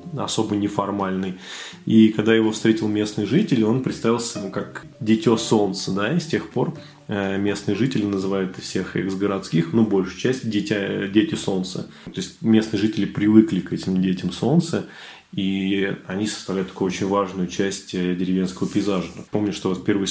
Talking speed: 150 wpm